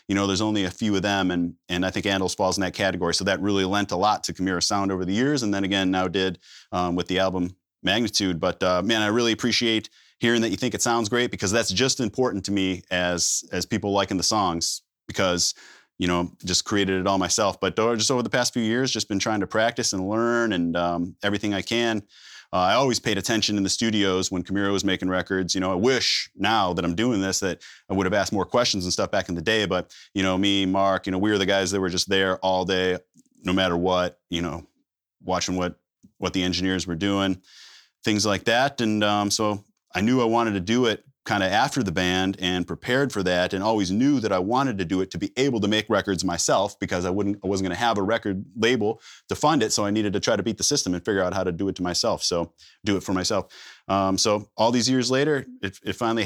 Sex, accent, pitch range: male, American, 95-110 Hz